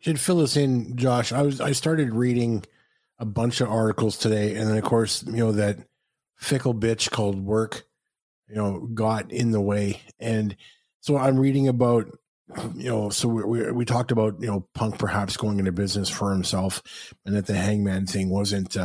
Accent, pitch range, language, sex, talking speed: American, 105-125 Hz, English, male, 190 wpm